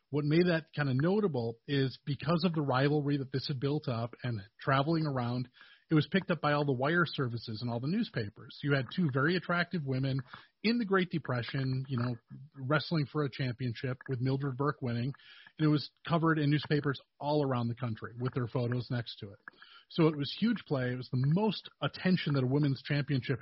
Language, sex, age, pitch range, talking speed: English, male, 30-49, 130-160 Hz, 210 wpm